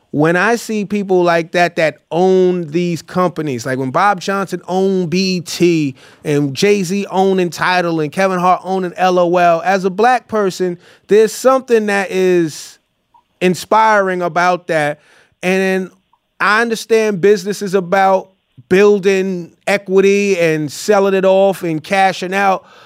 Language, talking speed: English, 135 wpm